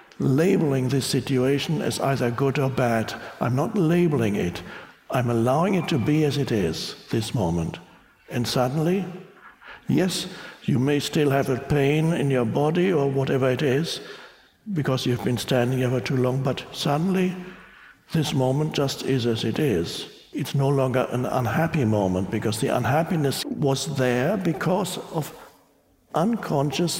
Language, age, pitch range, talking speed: English, 60-79, 130-170 Hz, 150 wpm